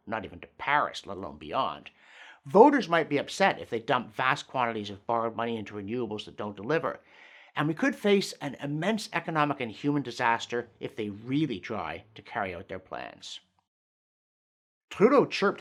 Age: 50-69